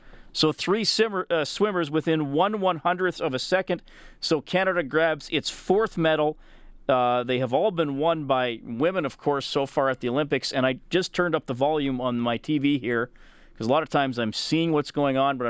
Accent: American